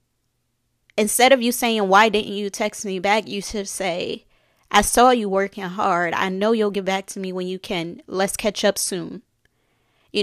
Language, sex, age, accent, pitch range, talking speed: English, female, 20-39, American, 185-230 Hz, 195 wpm